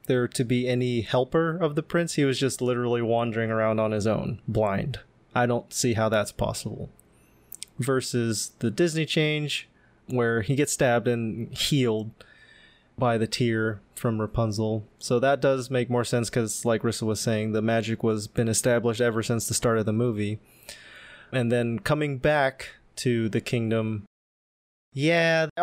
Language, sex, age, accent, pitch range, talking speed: English, male, 20-39, American, 115-140 Hz, 165 wpm